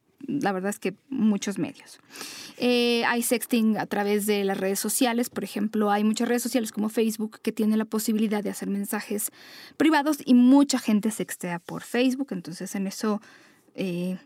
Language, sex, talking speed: Spanish, female, 175 wpm